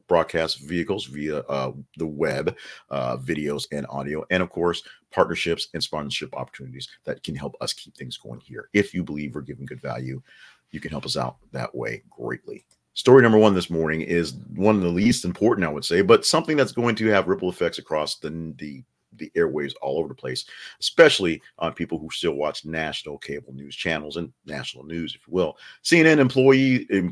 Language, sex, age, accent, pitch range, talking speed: English, male, 40-59, American, 75-95 Hz, 195 wpm